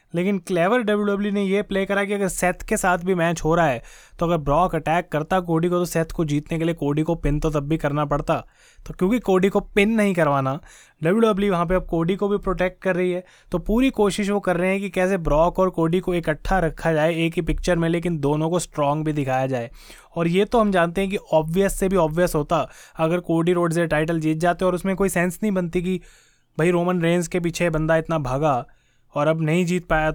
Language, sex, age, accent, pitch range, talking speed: Hindi, male, 20-39, native, 160-190 Hz, 245 wpm